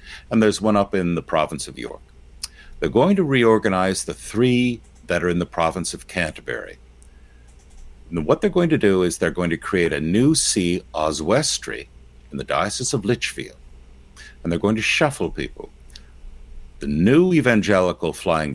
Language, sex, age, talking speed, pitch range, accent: English, male, 60-79, 170 wpm, 65-110 Hz, American